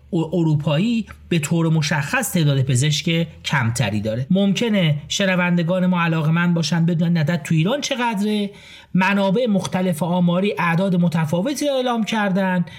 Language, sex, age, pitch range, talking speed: Persian, male, 40-59, 140-190 Hz, 125 wpm